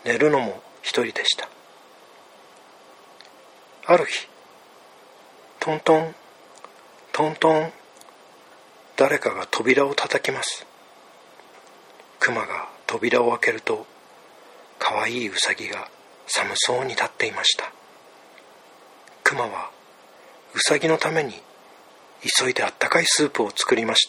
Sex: male